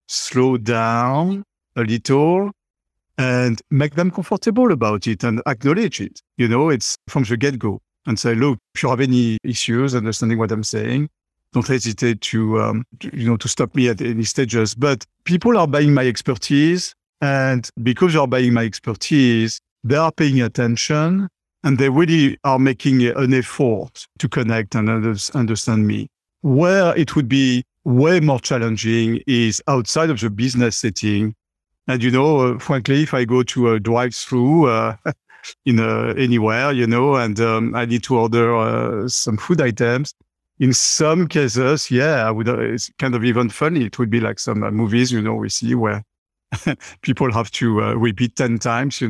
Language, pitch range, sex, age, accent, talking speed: English, 115-140 Hz, male, 50-69, French, 175 wpm